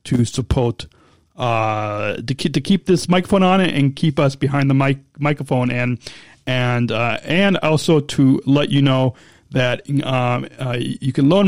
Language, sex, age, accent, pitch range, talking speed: English, male, 30-49, American, 130-165 Hz, 175 wpm